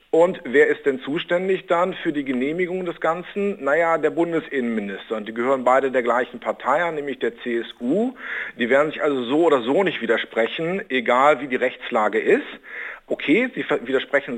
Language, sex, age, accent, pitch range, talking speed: German, male, 50-69, German, 130-175 Hz, 175 wpm